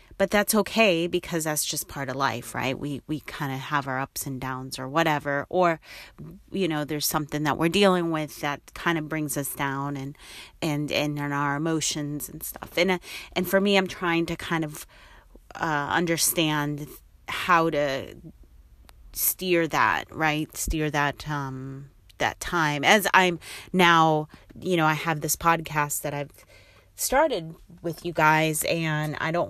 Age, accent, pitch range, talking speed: 30-49, American, 145-170 Hz, 170 wpm